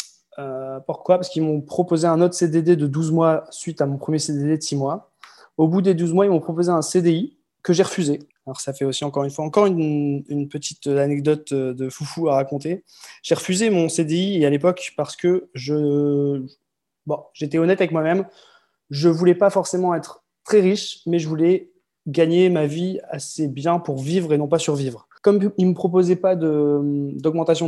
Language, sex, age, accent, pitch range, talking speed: French, male, 20-39, French, 145-175 Hz, 195 wpm